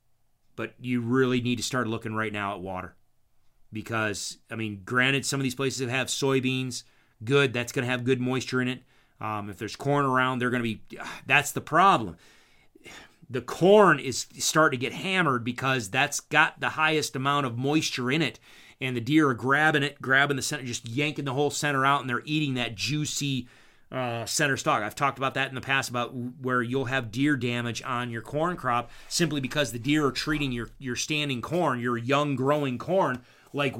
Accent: American